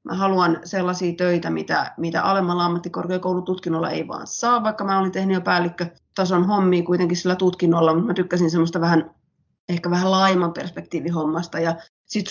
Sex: female